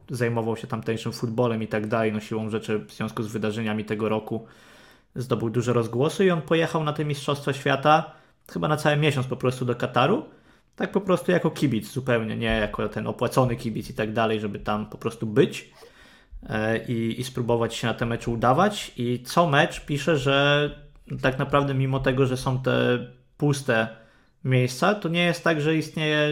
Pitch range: 115-140 Hz